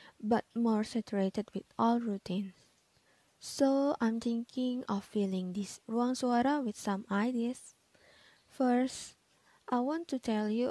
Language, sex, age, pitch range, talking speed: Indonesian, female, 20-39, 205-270 Hz, 130 wpm